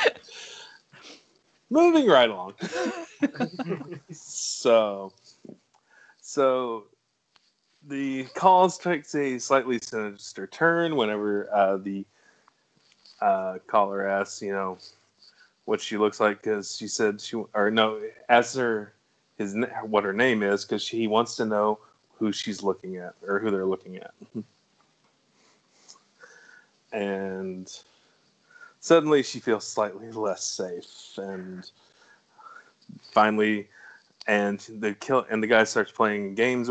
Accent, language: American, English